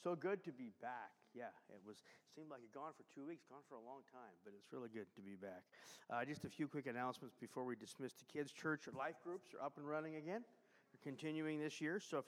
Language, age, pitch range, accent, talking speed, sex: English, 50-69, 140-175 Hz, American, 260 wpm, male